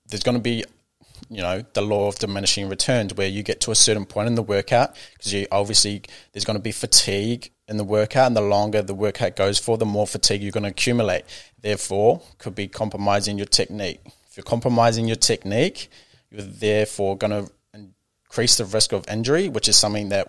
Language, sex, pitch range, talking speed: English, male, 100-115 Hz, 220 wpm